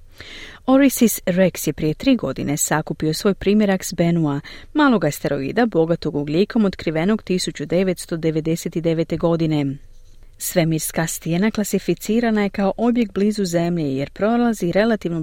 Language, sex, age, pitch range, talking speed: Croatian, female, 40-59, 150-205 Hz, 115 wpm